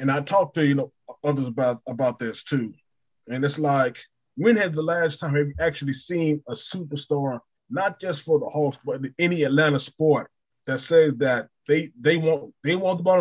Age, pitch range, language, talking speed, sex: 20-39, 135-165 Hz, English, 200 wpm, male